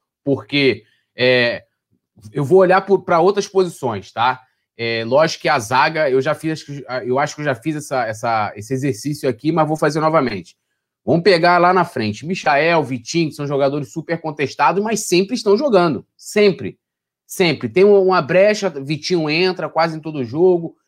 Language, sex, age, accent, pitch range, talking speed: Portuguese, male, 20-39, Brazilian, 135-180 Hz, 170 wpm